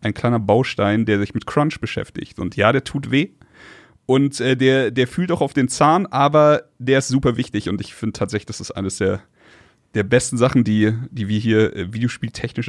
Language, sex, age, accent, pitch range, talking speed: German, male, 30-49, German, 110-130 Hz, 210 wpm